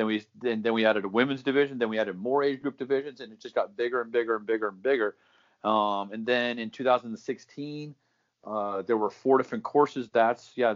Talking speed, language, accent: 225 wpm, English, American